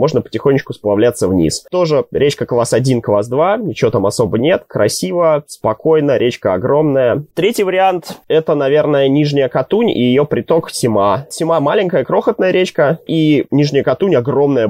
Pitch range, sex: 115-160 Hz, male